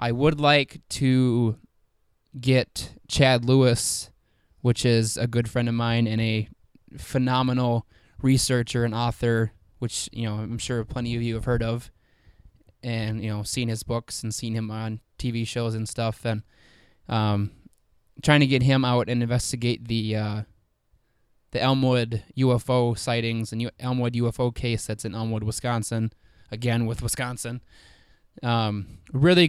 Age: 20-39